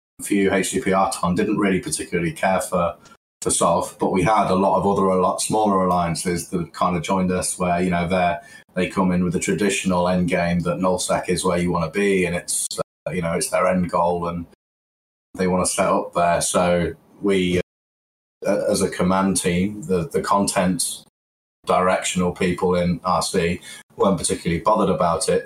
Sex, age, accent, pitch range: male, 20-39, British, 90-100 Hz